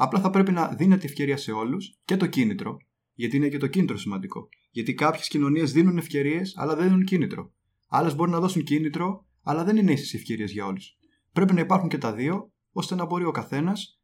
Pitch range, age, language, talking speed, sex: 130-175 Hz, 20-39, Greek, 210 wpm, male